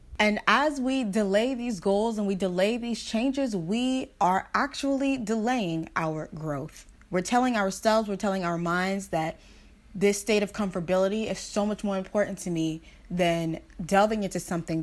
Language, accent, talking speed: English, American, 160 wpm